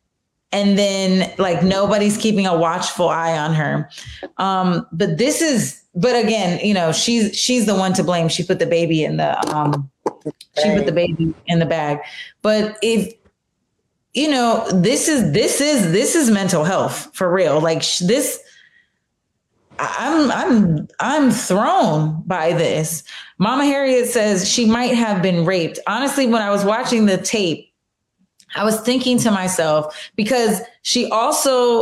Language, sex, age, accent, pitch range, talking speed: English, female, 30-49, American, 175-230 Hz, 155 wpm